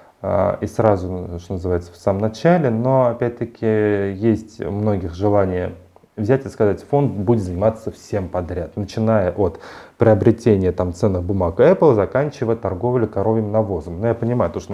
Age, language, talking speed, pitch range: 30-49, Russian, 155 wpm, 95-120 Hz